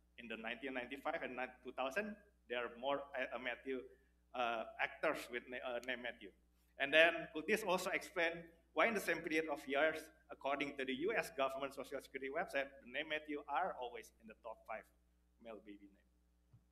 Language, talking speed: English, 180 wpm